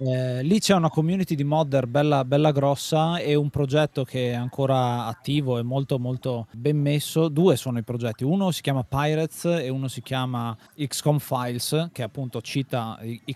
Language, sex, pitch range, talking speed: Italian, male, 125-145 Hz, 180 wpm